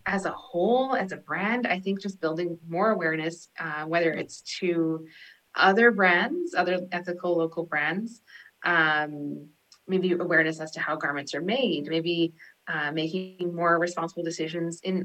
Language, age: English, 30-49